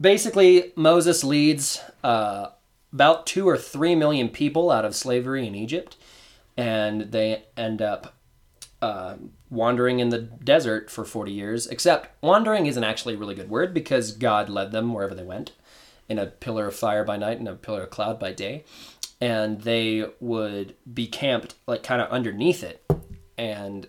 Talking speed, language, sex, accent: 170 wpm, English, male, American